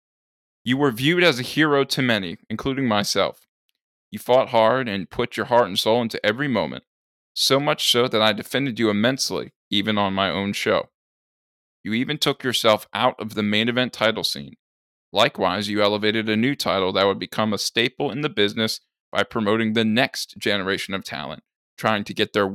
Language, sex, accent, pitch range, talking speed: English, male, American, 100-125 Hz, 190 wpm